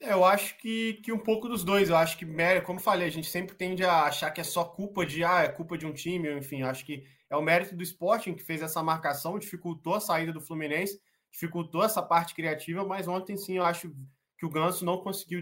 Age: 20-39